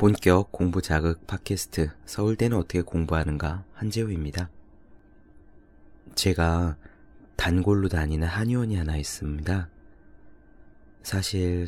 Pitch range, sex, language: 75-95 Hz, male, Korean